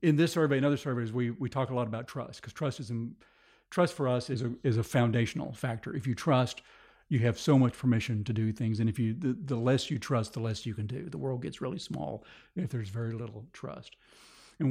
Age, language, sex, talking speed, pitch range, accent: 50-69, English, male, 250 wpm, 120-145 Hz, American